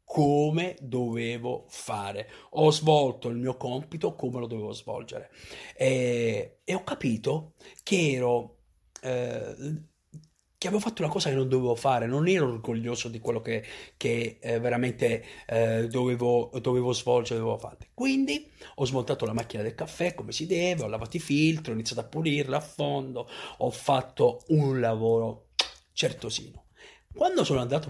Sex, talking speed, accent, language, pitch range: male, 155 wpm, native, Italian, 120-160 Hz